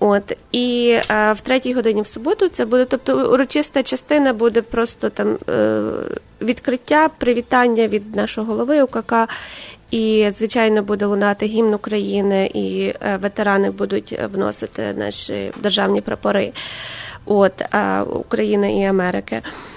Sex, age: female, 20-39